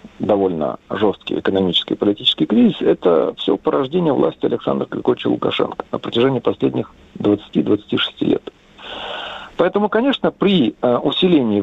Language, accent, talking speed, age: Russian, native, 115 wpm, 50-69